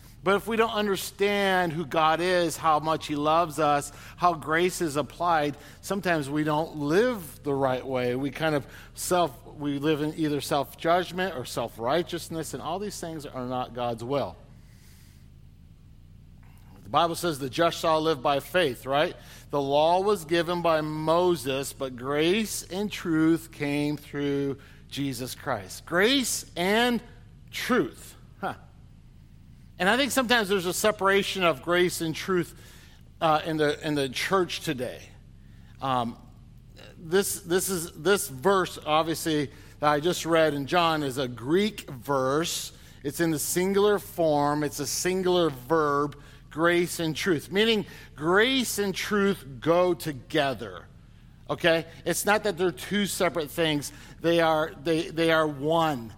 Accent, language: American, English